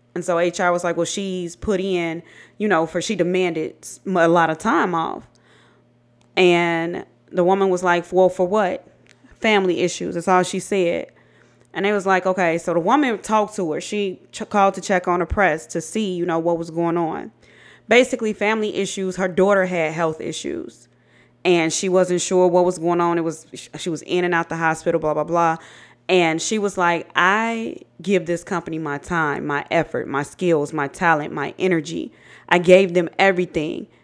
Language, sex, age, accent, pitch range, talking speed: English, female, 20-39, American, 160-185 Hz, 190 wpm